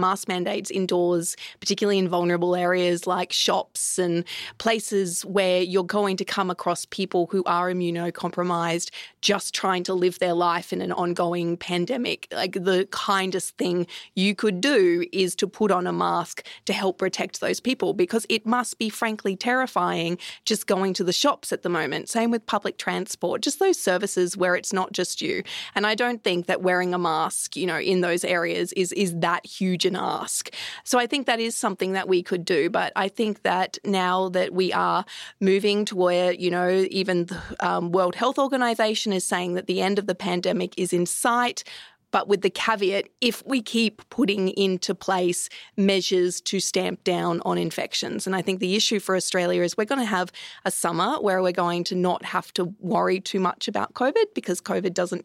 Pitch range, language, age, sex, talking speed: 180-210 Hz, English, 20-39, female, 195 wpm